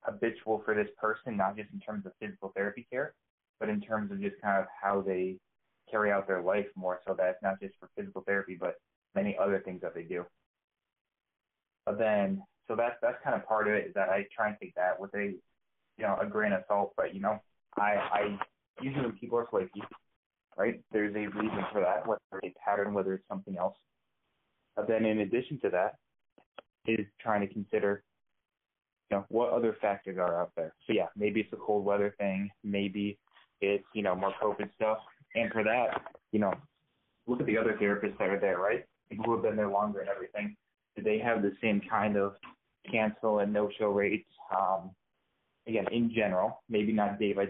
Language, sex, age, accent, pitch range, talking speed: English, male, 20-39, American, 100-110 Hz, 205 wpm